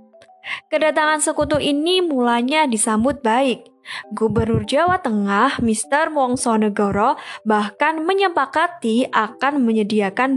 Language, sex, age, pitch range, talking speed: Indonesian, female, 10-29, 220-300 Hz, 95 wpm